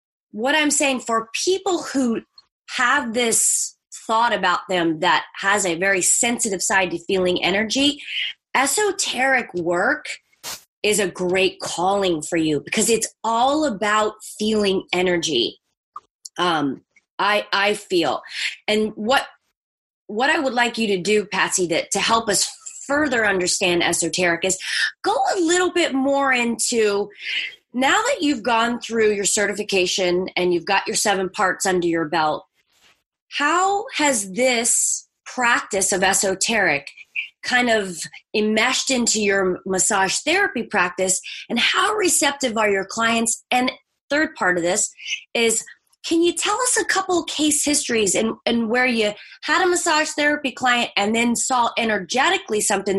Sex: female